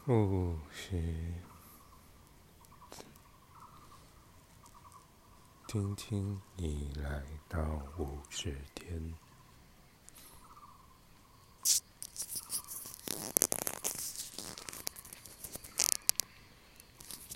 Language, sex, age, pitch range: Chinese, male, 50-69, 75-90 Hz